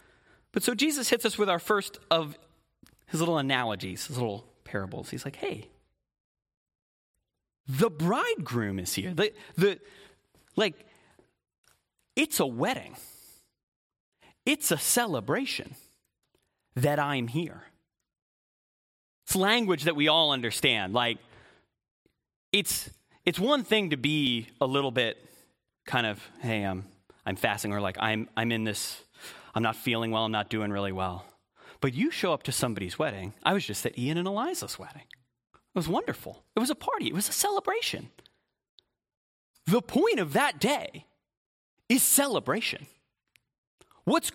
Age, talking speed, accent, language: 30-49, 140 wpm, American, English